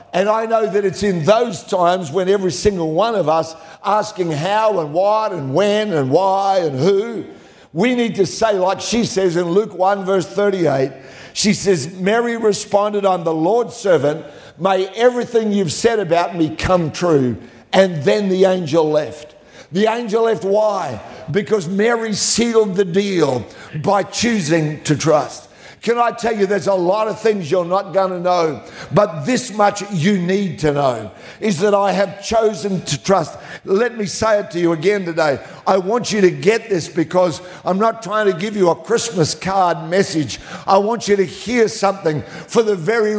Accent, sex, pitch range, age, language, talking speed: Australian, male, 175-210 Hz, 60-79, English, 185 wpm